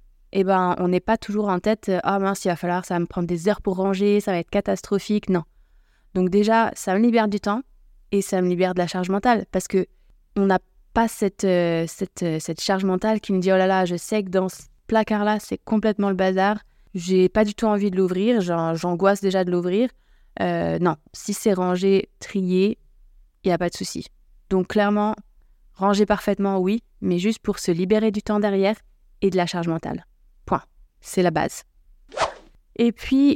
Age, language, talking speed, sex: 20-39, French, 205 wpm, female